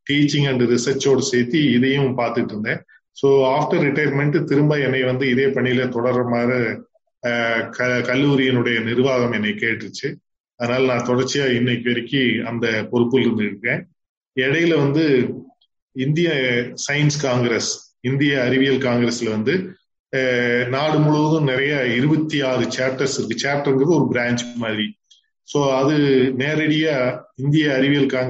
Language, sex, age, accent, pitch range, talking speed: English, male, 20-39, Indian, 120-145 Hz, 75 wpm